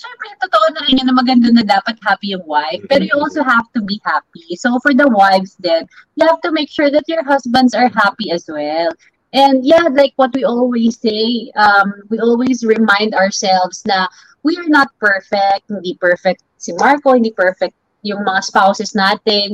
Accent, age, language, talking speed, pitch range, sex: Filipino, 20-39, English, 185 wpm, 190-260 Hz, female